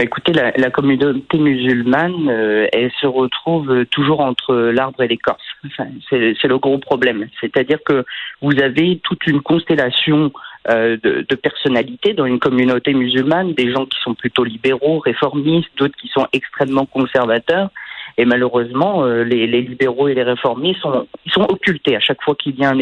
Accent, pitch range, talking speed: French, 125-160 Hz, 165 wpm